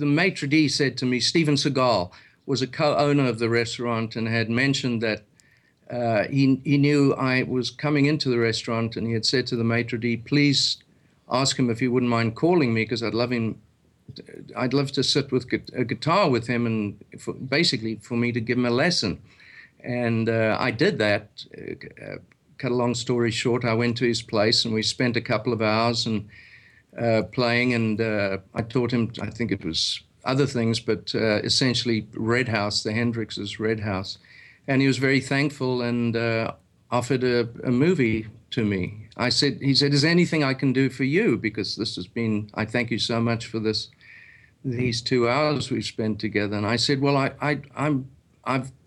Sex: male